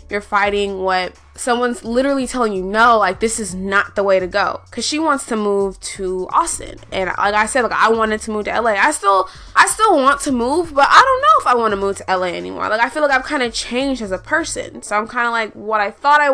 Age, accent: 20-39, American